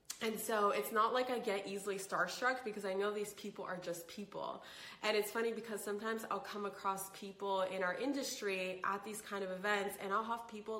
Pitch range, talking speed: 185-220 Hz, 210 wpm